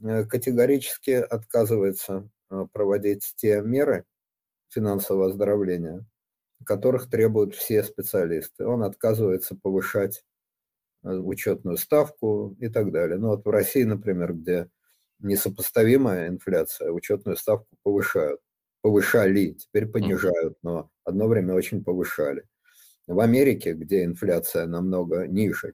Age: 50-69